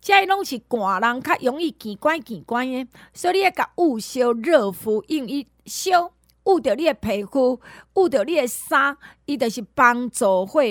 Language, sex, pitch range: Chinese, female, 225-330 Hz